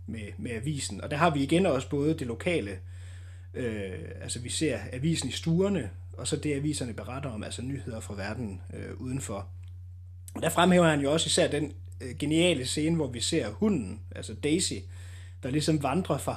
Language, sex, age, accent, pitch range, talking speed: Danish, male, 30-49, native, 95-150 Hz, 185 wpm